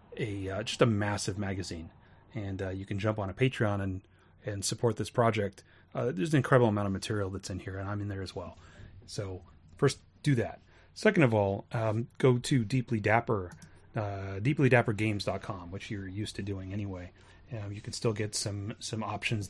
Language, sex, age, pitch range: English, male, 30-49, 95-115 Hz